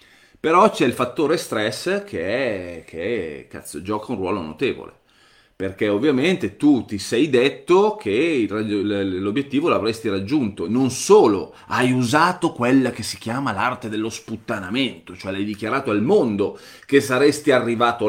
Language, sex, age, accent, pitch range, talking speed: Italian, male, 30-49, native, 105-170 Hz, 135 wpm